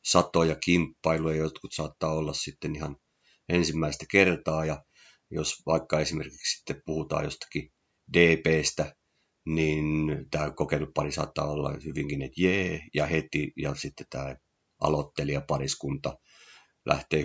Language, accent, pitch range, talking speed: Finnish, native, 75-80 Hz, 115 wpm